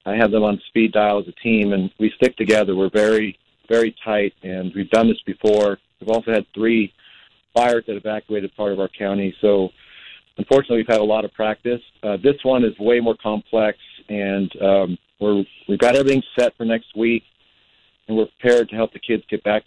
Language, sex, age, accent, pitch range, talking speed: English, male, 50-69, American, 100-115 Hz, 205 wpm